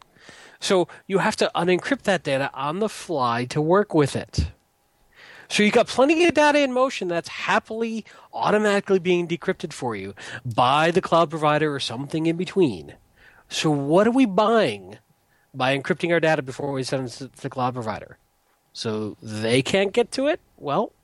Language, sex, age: English, male, 40-59